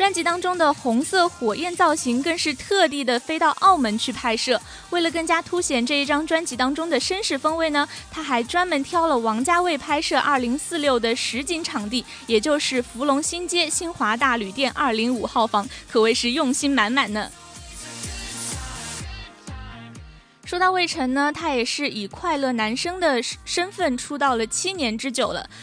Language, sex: Chinese, female